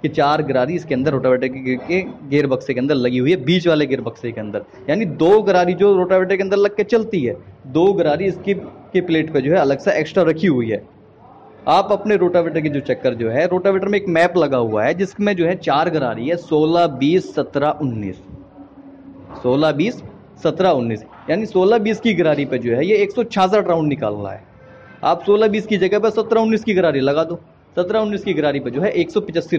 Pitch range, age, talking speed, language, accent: 140-195 Hz, 30-49, 220 wpm, Hindi, native